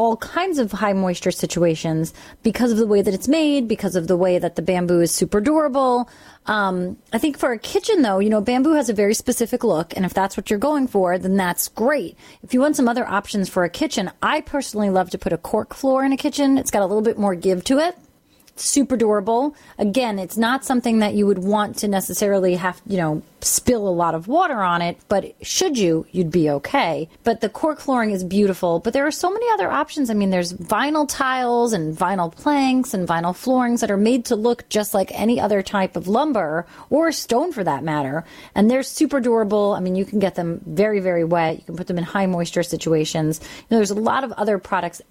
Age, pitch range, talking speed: 30-49, 185-250 Hz, 235 wpm